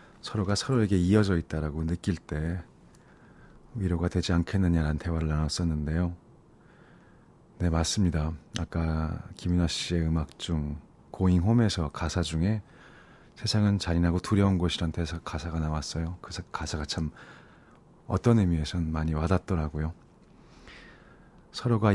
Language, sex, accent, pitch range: Korean, male, native, 80-100 Hz